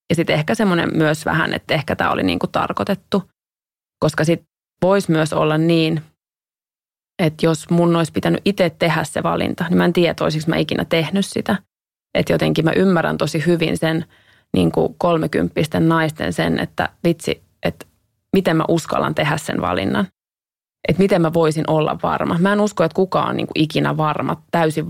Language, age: English, 20-39